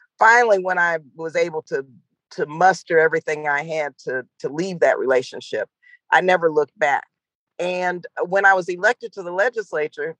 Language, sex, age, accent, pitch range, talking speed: English, female, 50-69, American, 170-235 Hz, 165 wpm